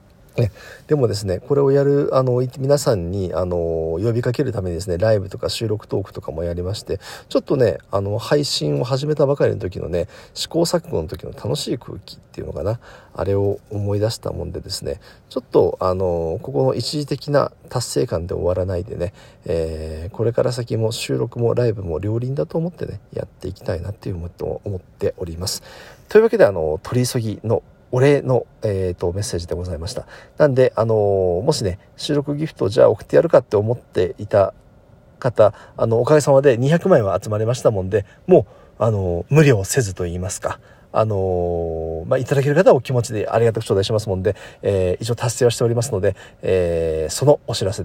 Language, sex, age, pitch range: Japanese, male, 40-59, 95-135 Hz